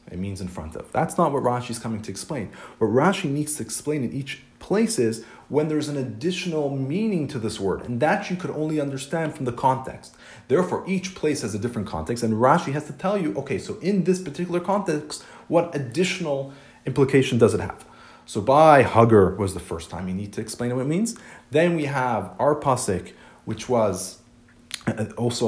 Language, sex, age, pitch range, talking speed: English, male, 30-49, 105-150 Hz, 200 wpm